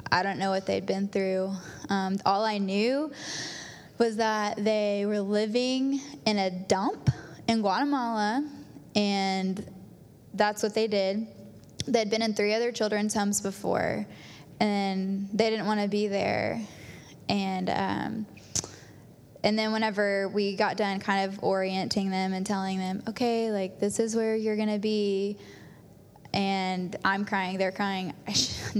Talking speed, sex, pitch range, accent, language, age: 150 wpm, female, 185-215 Hz, American, English, 10-29